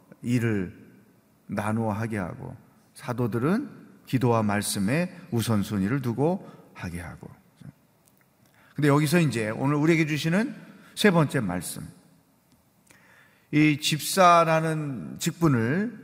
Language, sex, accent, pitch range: Korean, male, native, 125-175 Hz